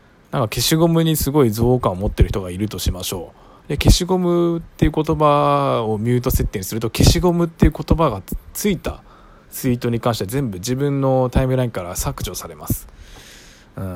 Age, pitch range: 20-39, 105-145 Hz